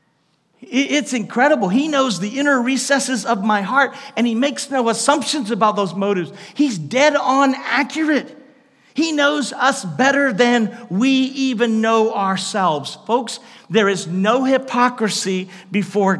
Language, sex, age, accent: English, male, 50-69, American